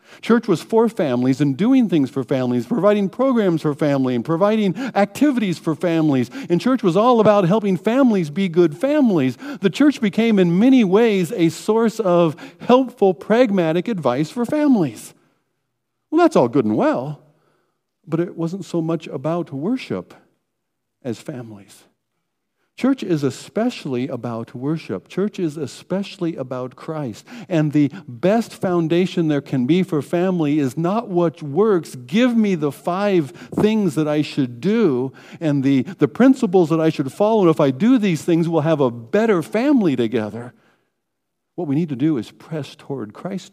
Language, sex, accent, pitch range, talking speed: English, male, American, 145-210 Hz, 165 wpm